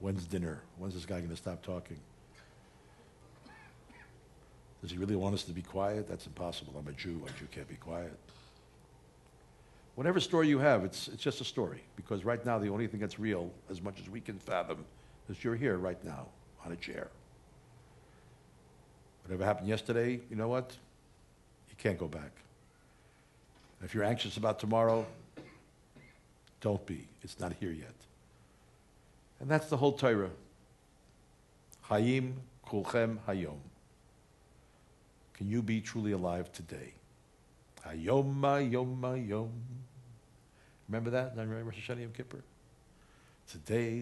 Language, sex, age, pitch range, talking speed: English, male, 60-79, 90-125 Hz, 140 wpm